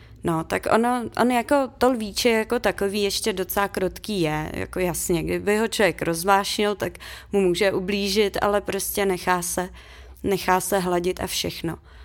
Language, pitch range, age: Czech, 190-230 Hz, 30-49